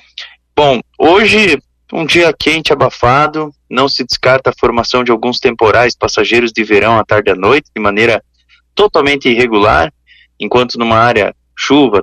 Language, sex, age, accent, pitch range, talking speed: Portuguese, male, 20-39, Brazilian, 105-140 Hz, 150 wpm